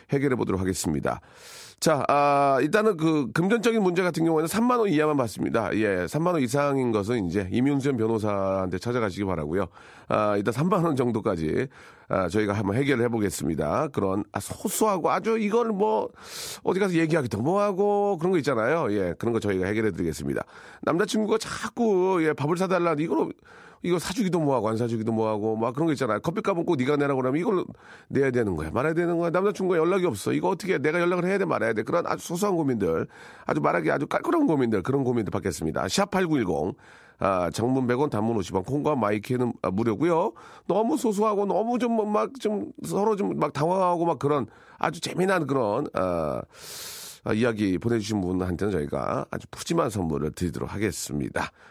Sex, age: male, 40-59